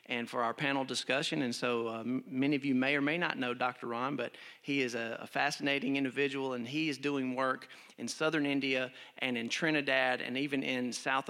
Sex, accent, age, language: male, American, 40-59, English